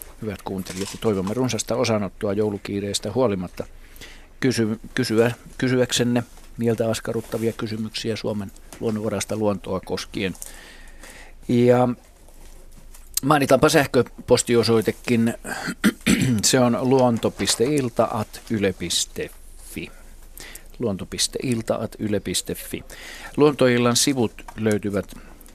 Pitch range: 100-125 Hz